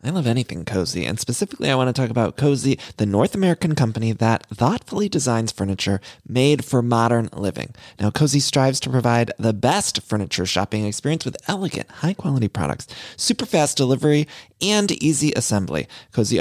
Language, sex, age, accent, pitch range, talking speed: English, male, 30-49, American, 115-150 Hz, 170 wpm